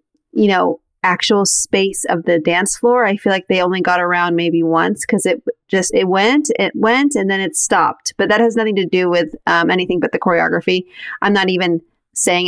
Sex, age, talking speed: female, 30-49, 210 wpm